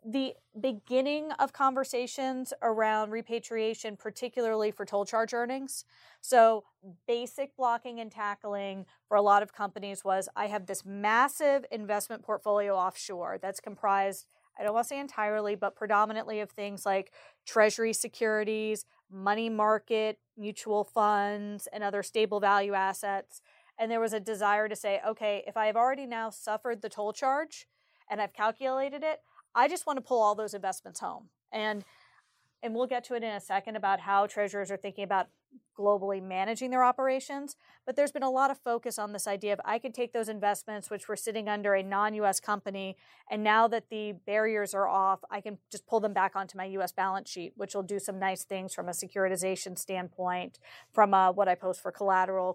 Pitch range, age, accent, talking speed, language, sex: 200-235 Hz, 30-49, American, 185 wpm, English, female